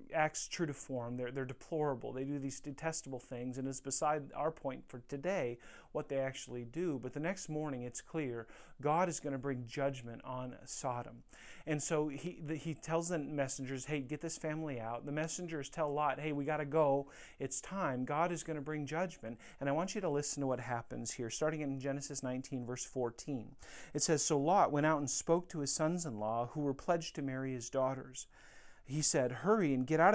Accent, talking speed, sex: American, 215 wpm, male